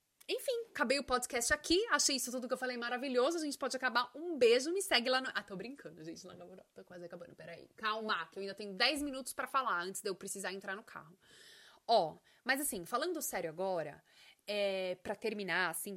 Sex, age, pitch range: female, 20-39, 195-300 Hz